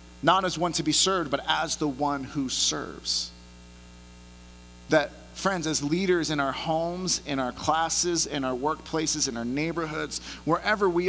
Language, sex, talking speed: English, male, 160 wpm